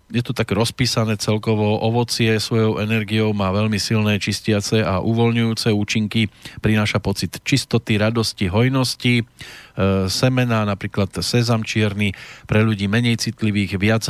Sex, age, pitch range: male, 40-59, 105-115 Hz